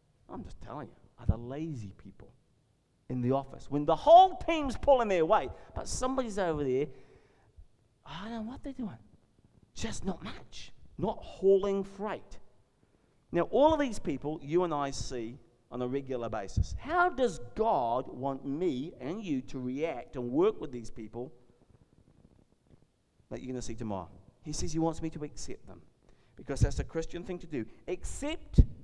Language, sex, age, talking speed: English, male, 50-69, 175 wpm